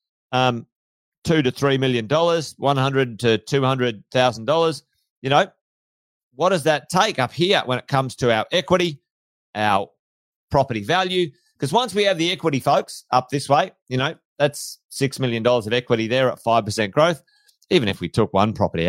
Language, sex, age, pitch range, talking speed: English, male, 30-49, 115-155 Hz, 185 wpm